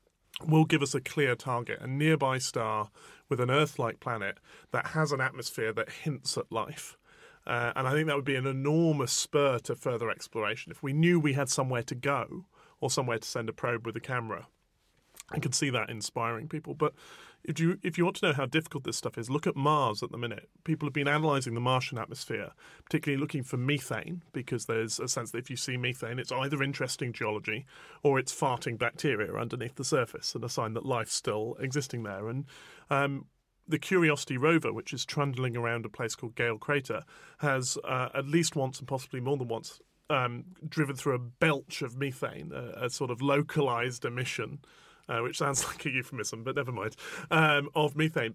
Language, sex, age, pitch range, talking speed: English, male, 30-49, 125-155 Hz, 205 wpm